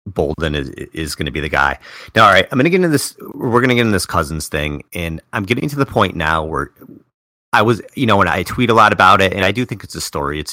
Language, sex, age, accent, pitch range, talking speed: English, male, 30-49, American, 80-115 Hz, 295 wpm